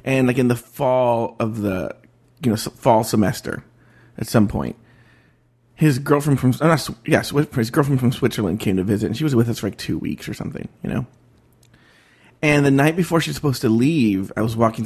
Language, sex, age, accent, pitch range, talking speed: English, male, 30-49, American, 110-135 Hz, 210 wpm